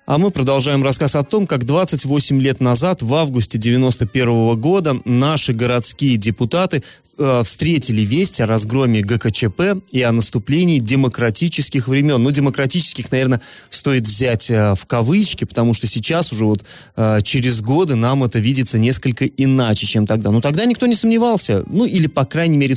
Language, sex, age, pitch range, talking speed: Russian, male, 20-39, 115-155 Hz, 165 wpm